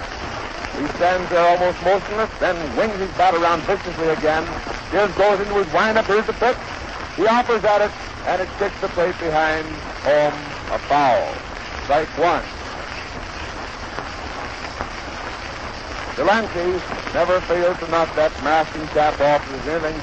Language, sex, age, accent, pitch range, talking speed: English, male, 60-79, American, 160-210 Hz, 140 wpm